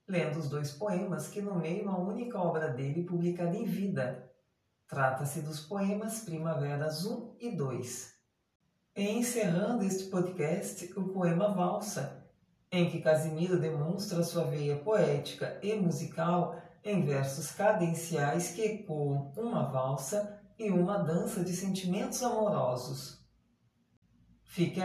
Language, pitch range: Portuguese, 150-195 Hz